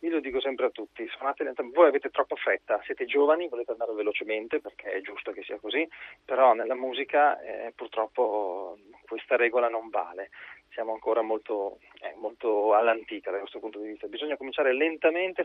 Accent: native